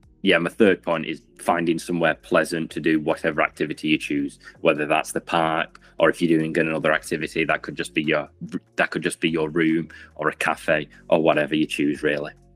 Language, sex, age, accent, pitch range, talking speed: English, male, 30-49, British, 85-140 Hz, 205 wpm